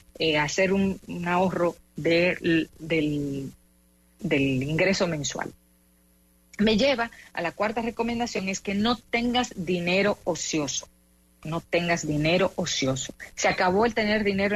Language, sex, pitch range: English, female, 165-220 Hz